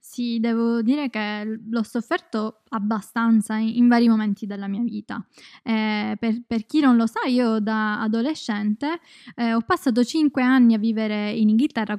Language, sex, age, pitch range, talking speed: Italian, female, 20-39, 220-260 Hz, 160 wpm